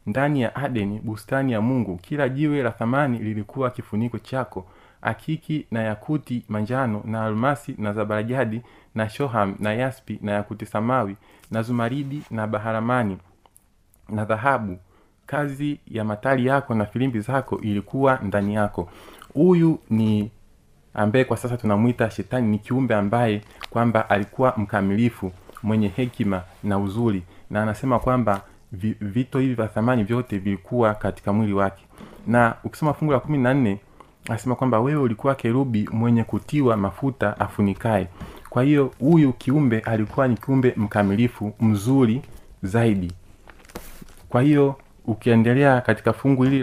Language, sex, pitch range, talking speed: Swahili, male, 105-130 Hz, 130 wpm